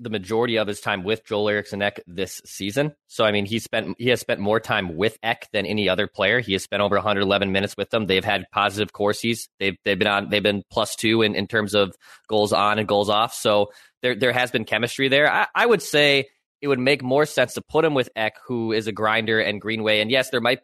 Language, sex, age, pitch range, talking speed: English, male, 20-39, 105-130 Hz, 255 wpm